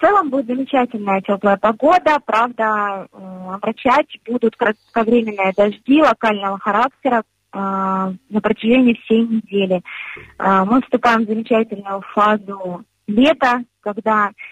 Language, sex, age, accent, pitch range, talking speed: Russian, female, 20-39, native, 205-250 Hz, 110 wpm